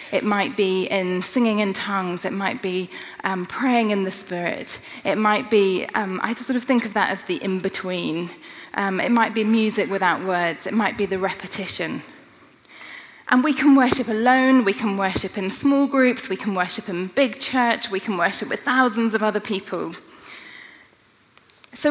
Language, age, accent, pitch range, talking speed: English, 30-49, British, 195-250 Hz, 185 wpm